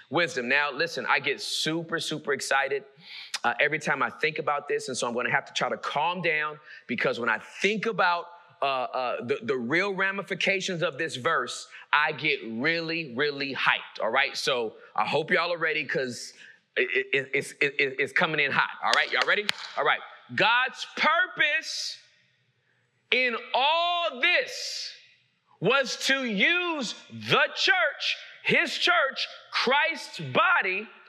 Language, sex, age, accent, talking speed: English, male, 30-49, American, 155 wpm